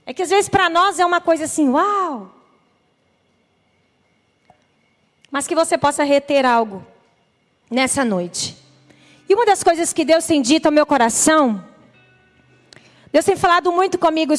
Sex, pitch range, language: female, 290-395 Hz, Portuguese